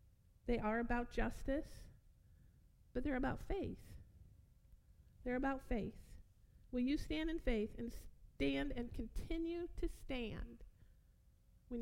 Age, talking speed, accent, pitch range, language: 50-69, 115 wpm, American, 210-260 Hz, English